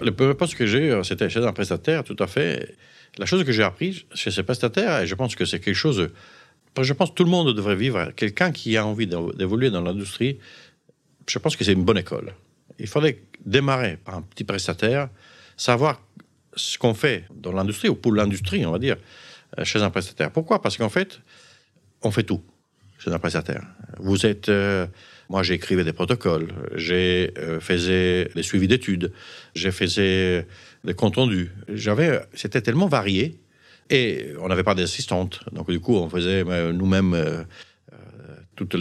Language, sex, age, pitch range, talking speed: French, male, 50-69, 90-120 Hz, 180 wpm